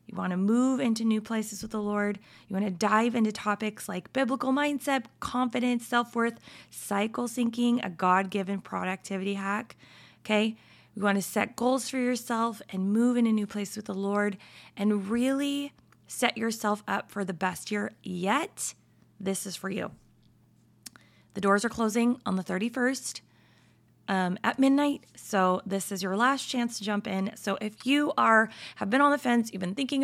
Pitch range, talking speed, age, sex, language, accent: 195-240 Hz, 180 wpm, 20-39, female, English, American